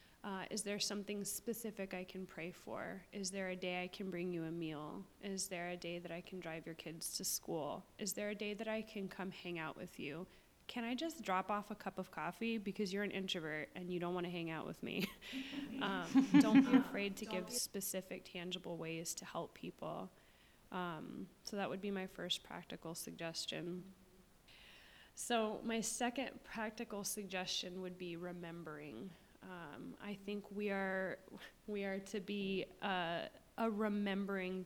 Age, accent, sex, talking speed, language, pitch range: 20-39, American, female, 185 wpm, English, 180-210 Hz